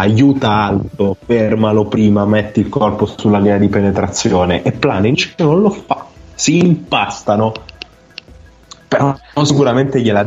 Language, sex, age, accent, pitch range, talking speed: Italian, male, 20-39, native, 105-140 Hz, 125 wpm